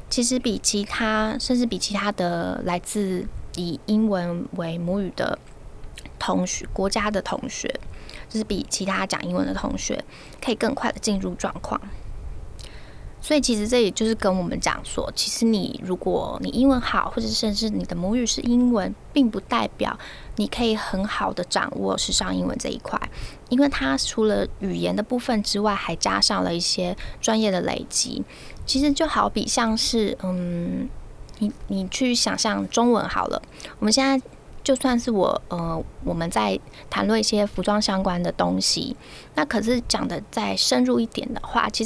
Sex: female